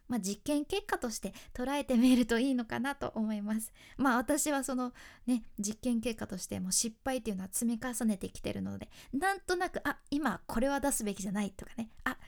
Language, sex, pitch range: Japanese, female, 220-325 Hz